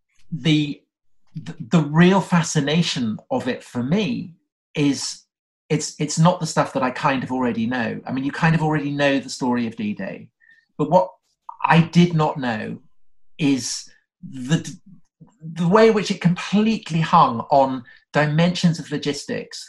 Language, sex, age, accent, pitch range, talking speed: English, male, 40-59, British, 130-180 Hz, 160 wpm